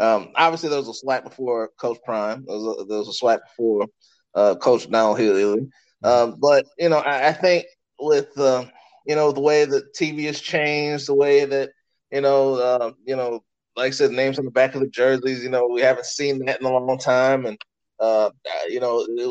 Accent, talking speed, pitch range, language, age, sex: American, 225 wpm, 120-155 Hz, English, 20-39, male